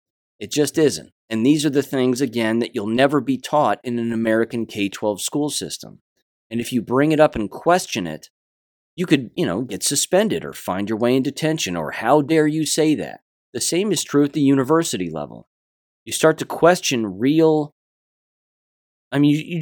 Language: English